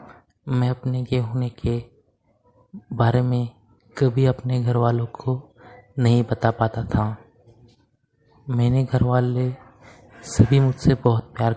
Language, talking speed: Hindi, 115 wpm